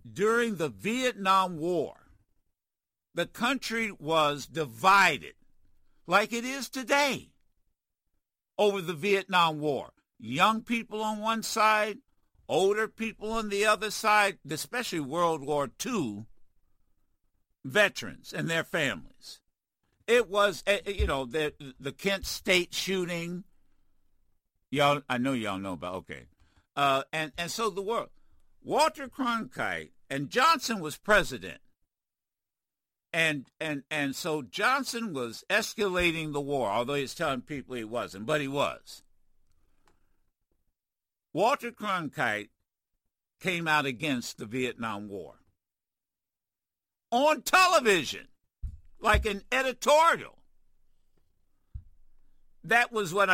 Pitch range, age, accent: 135-220 Hz, 60-79, American